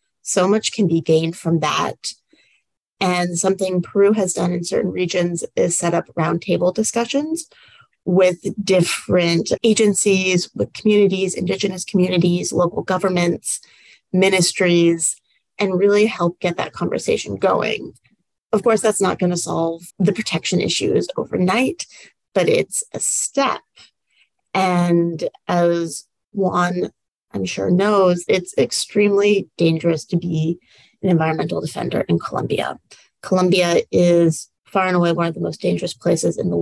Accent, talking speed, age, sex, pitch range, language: American, 130 wpm, 30-49, female, 170-205 Hz, English